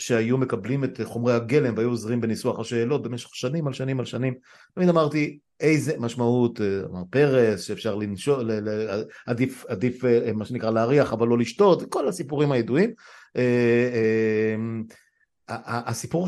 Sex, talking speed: male, 125 wpm